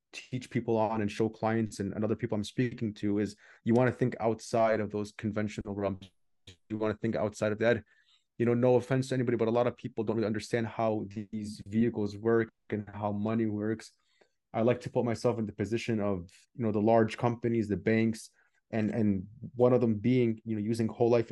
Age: 20-39